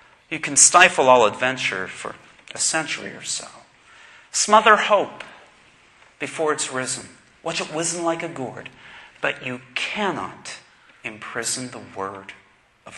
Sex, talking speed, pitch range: male, 130 wpm, 135-190 Hz